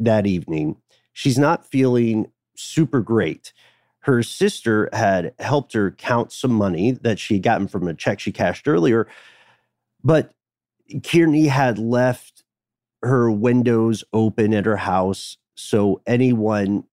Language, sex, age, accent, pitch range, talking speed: English, male, 40-59, American, 100-125 Hz, 130 wpm